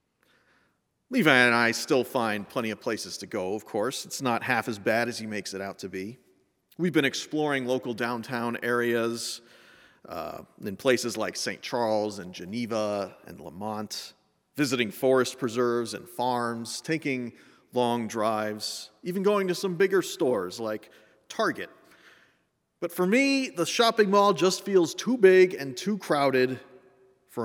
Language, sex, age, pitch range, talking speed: English, male, 40-59, 110-155 Hz, 155 wpm